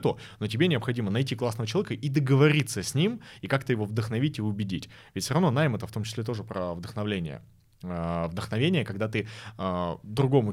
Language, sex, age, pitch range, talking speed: Russian, male, 20-39, 100-130 Hz, 175 wpm